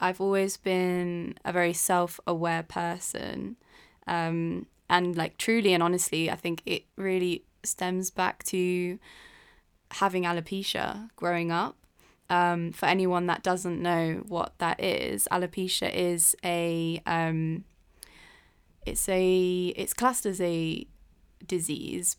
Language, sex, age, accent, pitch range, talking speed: English, female, 20-39, British, 170-190 Hz, 120 wpm